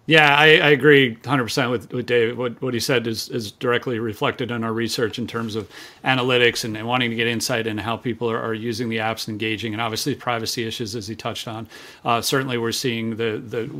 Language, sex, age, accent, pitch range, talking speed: English, male, 40-59, American, 115-135 Hz, 235 wpm